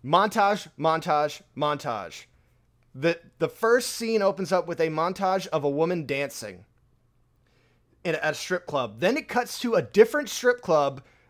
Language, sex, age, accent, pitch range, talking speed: English, male, 30-49, American, 130-200 Hz, 150 wpm